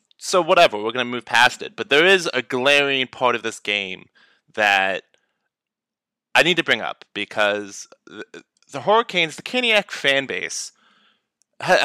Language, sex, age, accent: English, male, 20-39, American